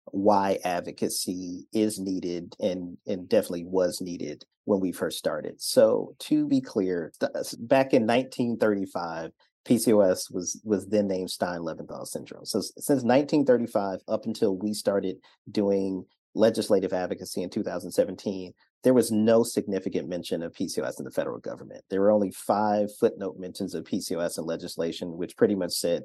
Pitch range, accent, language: 100-115 Hz, American, English